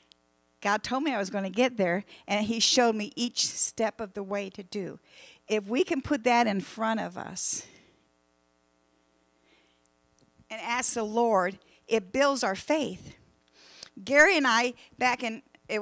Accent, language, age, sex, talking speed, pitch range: American, English, 50-69, female, 165 wpm, 205-245 Hz